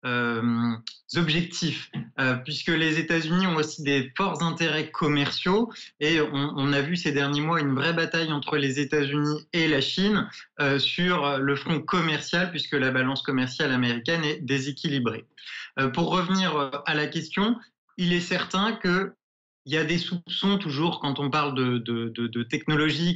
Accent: French